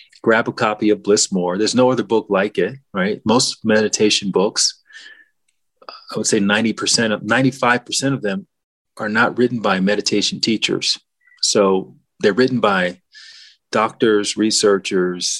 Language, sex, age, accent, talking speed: English, male, 30-49, American, 135 wpm